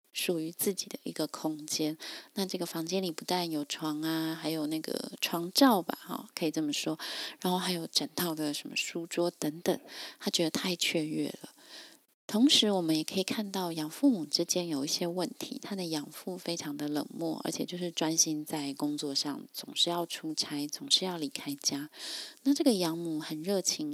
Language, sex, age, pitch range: Chinese, female, 20-39, 160-230 Hz